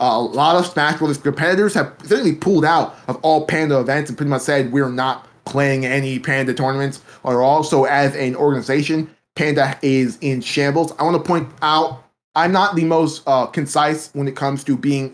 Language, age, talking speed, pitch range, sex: English, 20-39, 200 wpm, 135-160 Hz, male